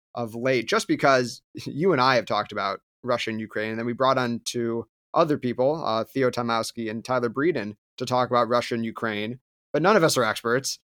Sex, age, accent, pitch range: male, 30-49, American, 115-135 Hz